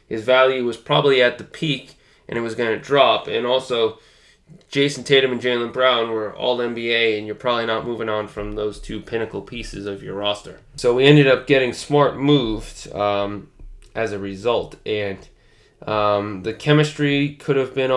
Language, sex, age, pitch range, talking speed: English, male, 20-39, 110-135 Hz, 185 wpm